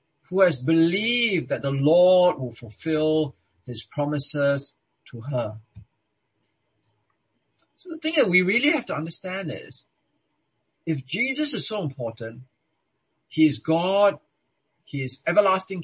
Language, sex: English, male